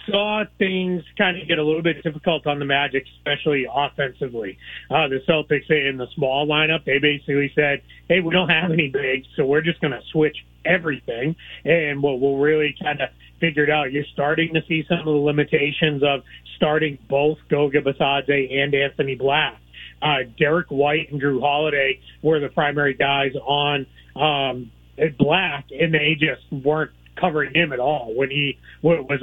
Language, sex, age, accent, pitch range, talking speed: English, male, 30-49, American, 140-165 Hz, 175 wpm